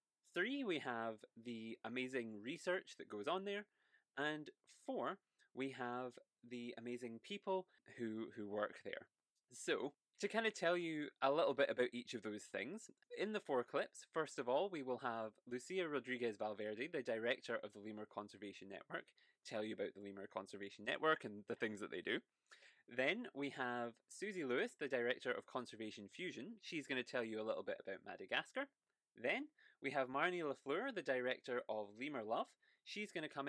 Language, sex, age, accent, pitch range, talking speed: English, male, 20-39, British, 110-155 Hz, 180 wpm